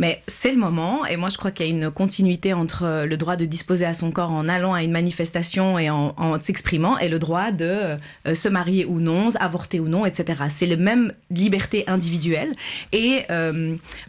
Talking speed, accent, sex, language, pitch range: 210 wpm, French, female, French, 175-210 Hz